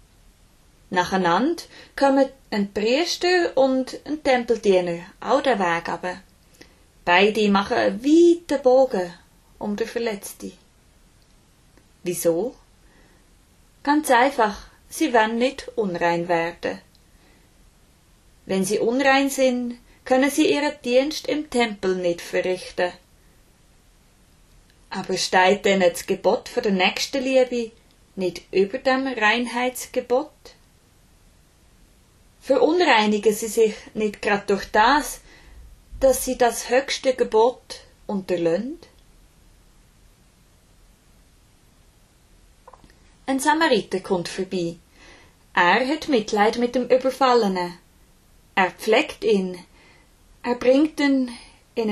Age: 20-39